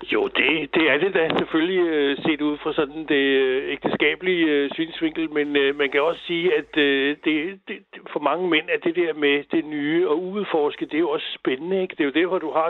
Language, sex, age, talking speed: Danish, male, 60-79, 230 wpm